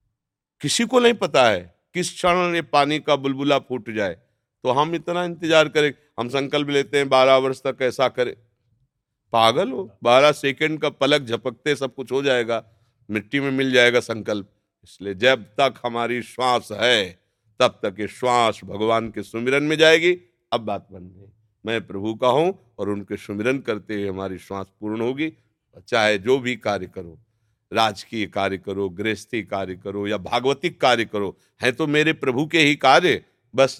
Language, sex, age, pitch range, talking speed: Hindi, male, 50-69, 115-150 Hz, 175 wpm